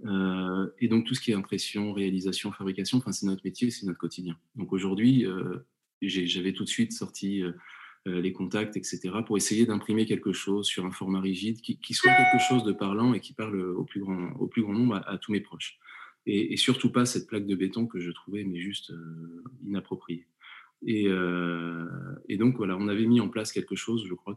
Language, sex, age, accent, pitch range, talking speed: French, male, 20-39, French, 95-115 Hz, 220 wpm